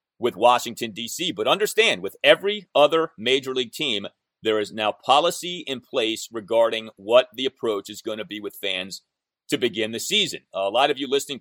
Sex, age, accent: male, 30-49, American